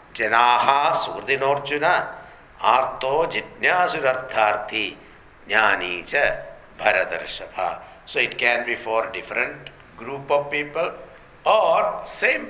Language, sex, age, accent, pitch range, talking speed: English, male, 60-79, Indian, 115-145 Hz, 55 wpm